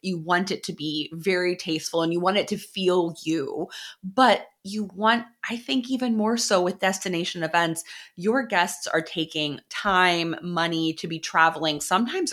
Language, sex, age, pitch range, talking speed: English, female, 20-39, 170-215 Hz, 170 wpm